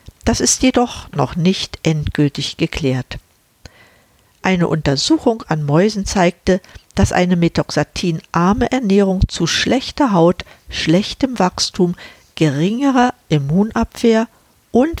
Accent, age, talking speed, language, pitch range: German, 50-69, 95 wpm, German, 145-215 Hz